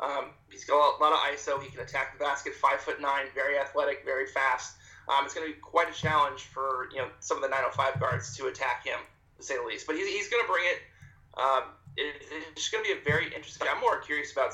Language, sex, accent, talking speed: English, male, American, 270 wpm